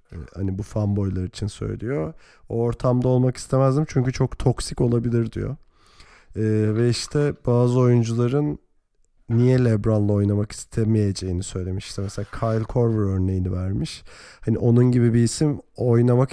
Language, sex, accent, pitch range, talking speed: Turkish, male, native, 105-125 Hz, 130 wpm